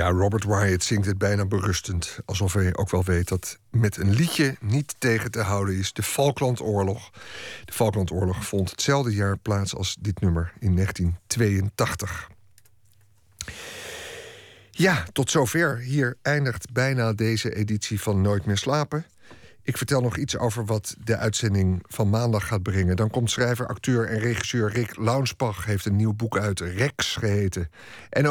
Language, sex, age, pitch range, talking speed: Dutch, male, 50-69, 100-130 Hz, 155 wpm